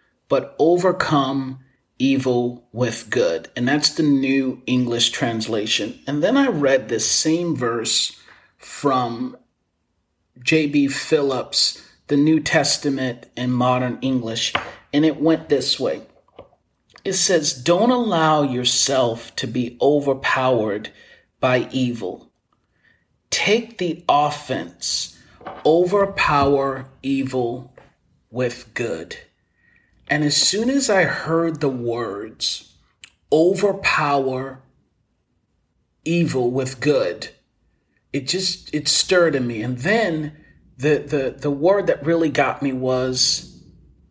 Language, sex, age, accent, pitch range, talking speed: English, male, 30-49, American, 125-160 Hz, 105 wpm